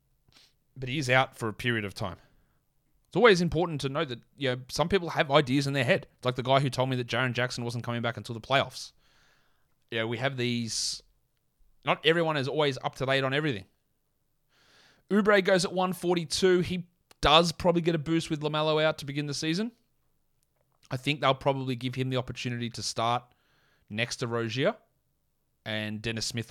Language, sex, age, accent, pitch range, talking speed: English, male, 30-49, Australian, 105-145 Hz, 195 wpm